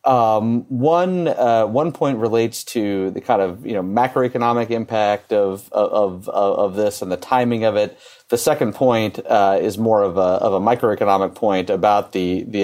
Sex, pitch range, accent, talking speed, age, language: male, 100-125 Hz, American, 185 wpm, 30-49, English